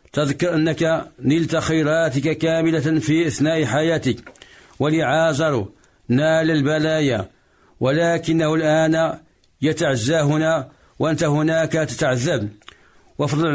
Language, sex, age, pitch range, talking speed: Arabic, male, 50-69, 150-165 Hz, 80 wpm